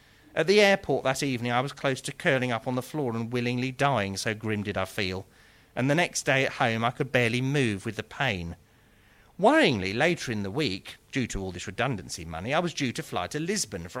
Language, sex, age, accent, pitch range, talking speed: English, male, 40-59, British, 95-140 Hz, 230 wpm